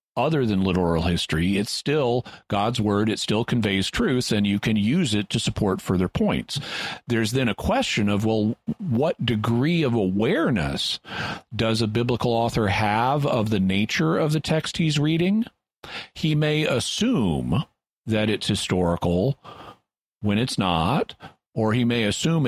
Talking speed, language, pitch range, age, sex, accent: 150 wpm, English, 100-125 Hz, 40-59, male, American